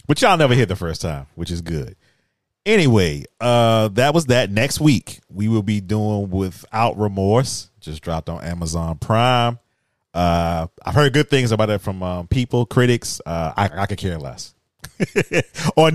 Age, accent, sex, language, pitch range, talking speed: 30-49, American, male, English, 85-125 Hz, 175 wpm